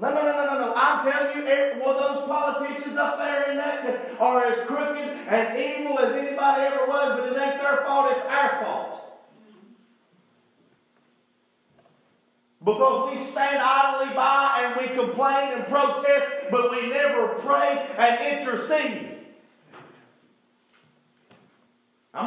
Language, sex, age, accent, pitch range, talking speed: English, male, 40-59, American, 245-280 Hz, 130 wpm